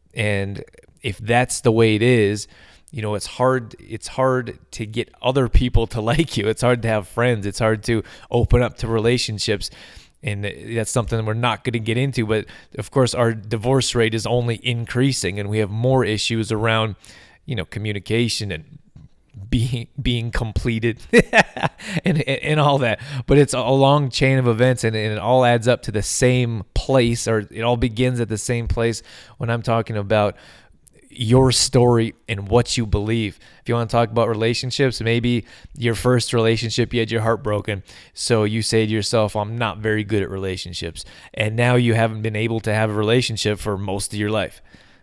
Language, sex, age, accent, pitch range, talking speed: English, male, 20-39, American, 105-125 Hz, 195 wpm